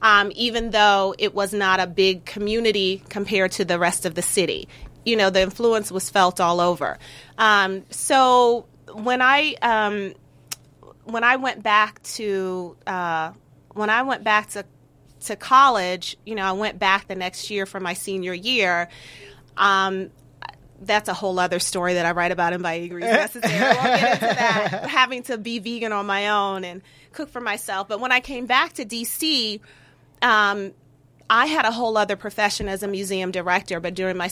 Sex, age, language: female, 30-49, English